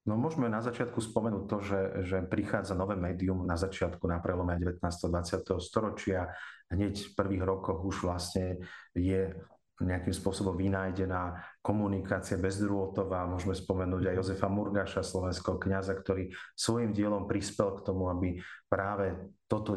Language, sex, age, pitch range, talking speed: Slovak, male, 40-59, 95-105 Hz, 140 wpm